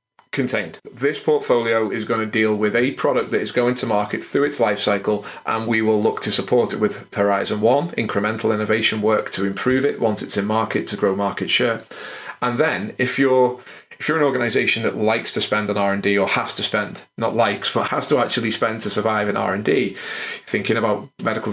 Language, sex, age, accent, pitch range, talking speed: English, male, 30-49, British, 105-125 Hz, 210 wpm